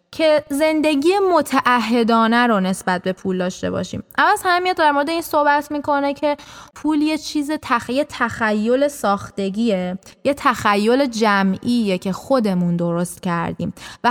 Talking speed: 135 wpm